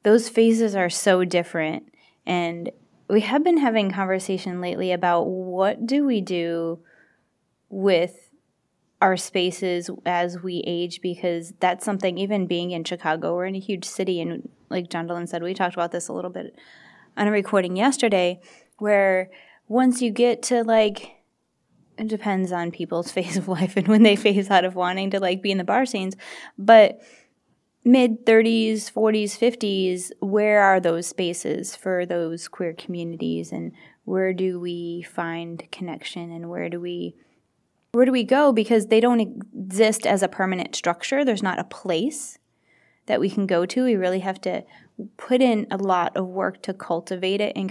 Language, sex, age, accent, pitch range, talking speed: English, female, 20-39, American, 180-220 Hz, 165 wpm